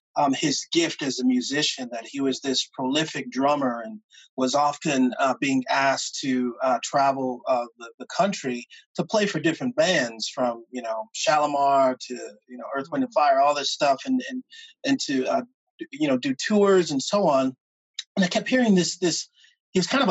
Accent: American